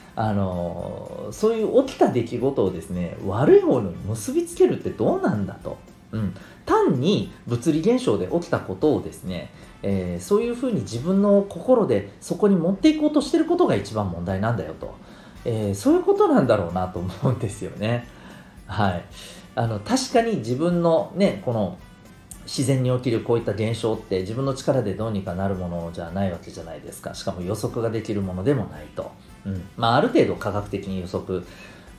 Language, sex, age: Japanese, male, 40-59